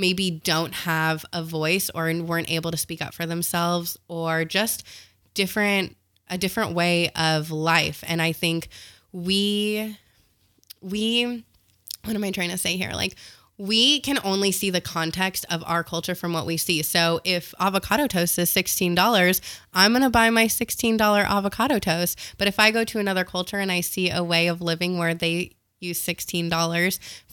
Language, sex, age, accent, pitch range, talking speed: English, female, 20-39, American, 165-190 Hz, 170 wpm